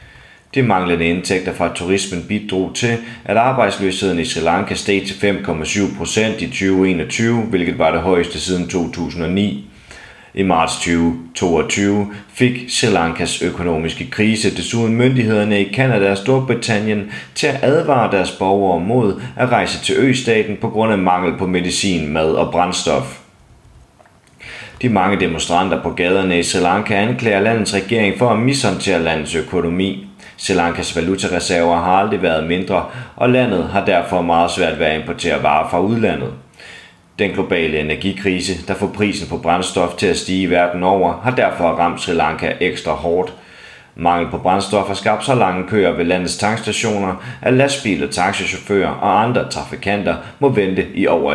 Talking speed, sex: 155 wpm, male